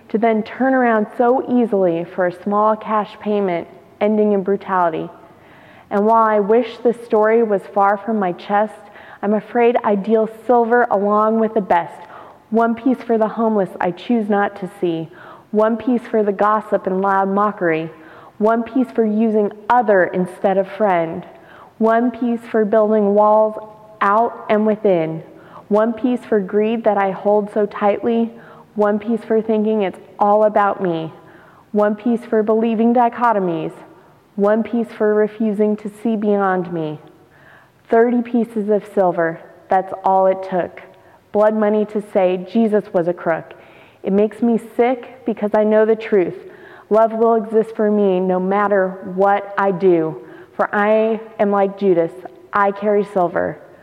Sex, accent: female, American